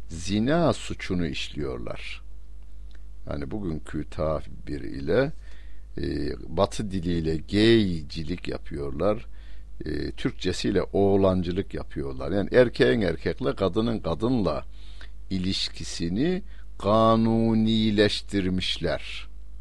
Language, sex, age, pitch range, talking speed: Turkish, male, 60-79, 80-105 Hz, 65 wpm